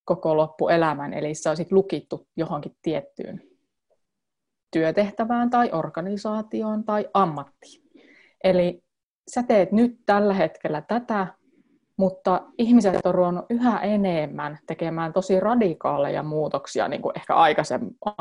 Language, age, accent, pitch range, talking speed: Finnish, 30-49, native, 160-205 Hz, 110 wpm